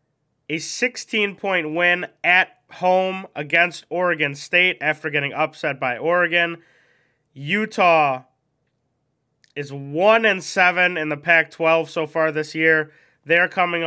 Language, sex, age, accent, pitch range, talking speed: English, male, 20-39, American, 150-175 Hz, 110 wpm